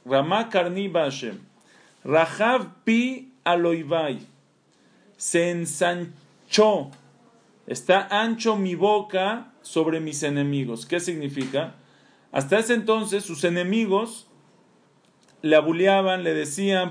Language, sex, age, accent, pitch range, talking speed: Spanish, male, 40-59, Mexican, 165-200 Hz, 90 wpm